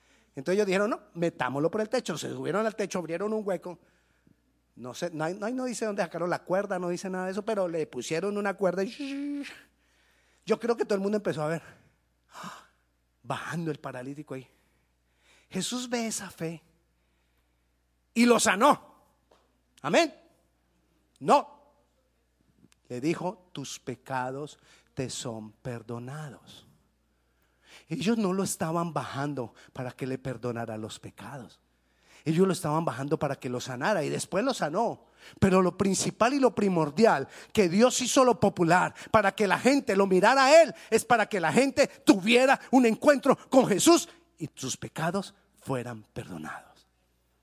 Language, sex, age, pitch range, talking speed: Spanish, male, 30-49, 120-205 Hz, 155 wpm